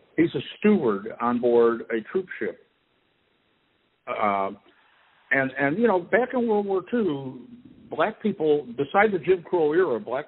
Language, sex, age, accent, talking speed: English, male, 60-79, American, 150 wpm